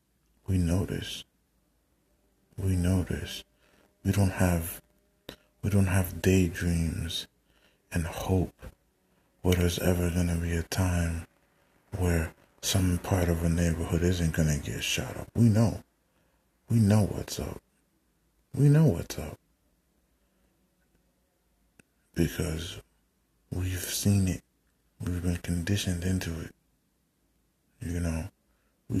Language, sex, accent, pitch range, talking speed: English, male, American, 85-95 Hz, 115 wpm